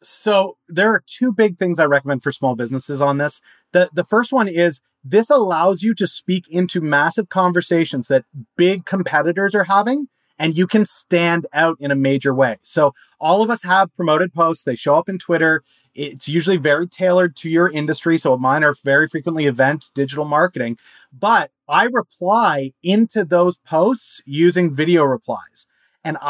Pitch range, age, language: 145-185 Hz, 30-49, English